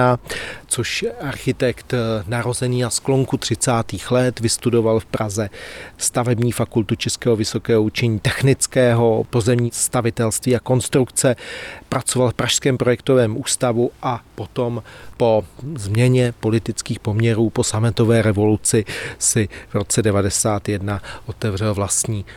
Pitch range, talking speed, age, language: 110-125 Hz, 105 wpm, 40-59, Czech